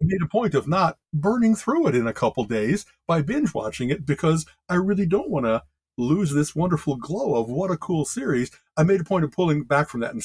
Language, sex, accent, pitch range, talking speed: English, male, American, 130-190 Hz, 240 wpm